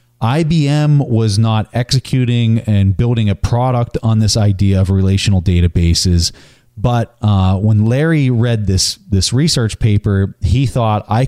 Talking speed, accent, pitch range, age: 140 wpm, American, 95-120 Hz, 30-49